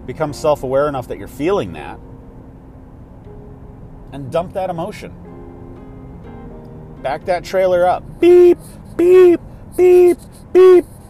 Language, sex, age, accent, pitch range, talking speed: English, male, 40-59, American, 105-145 Hz, 105 wpm